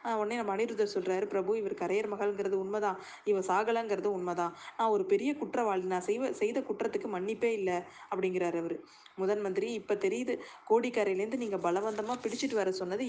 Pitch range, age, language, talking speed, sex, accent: 190-235 Hz, 20-39, Tamil, 145 wpm, female, native